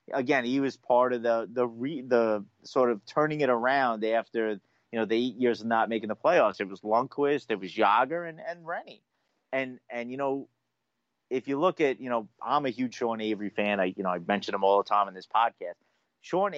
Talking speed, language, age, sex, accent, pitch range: 230 wpm, English, 30-49, male, American, 110-140 Hz